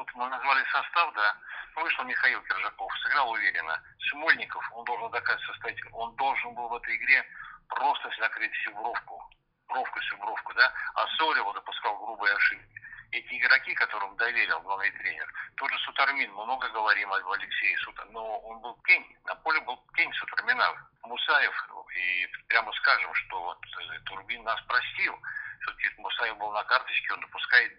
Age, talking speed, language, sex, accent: 60-79, 145 wpm, Russian, male, native